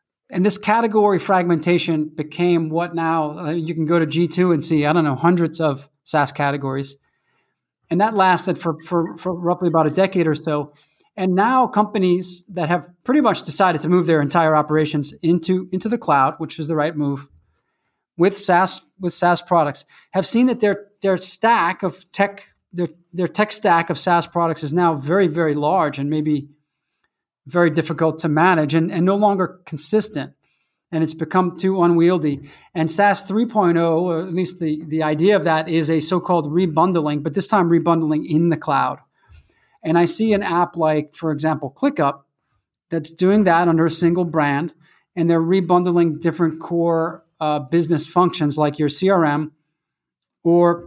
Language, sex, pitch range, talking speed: English, male, 155-180 Hz, 175 wpm